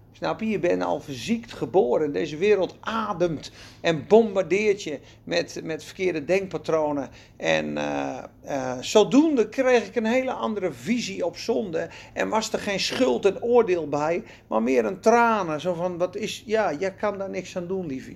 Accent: Dutch